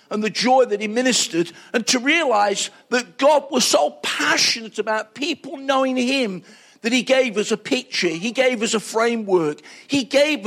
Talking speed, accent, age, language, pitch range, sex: 180 wpm, British, 50-69, English, 205-255 Hz, male